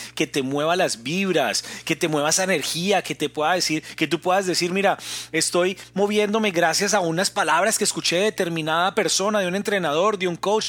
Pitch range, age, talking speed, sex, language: 160-210 Hz, 30-49, 200 wpm, male, Spanish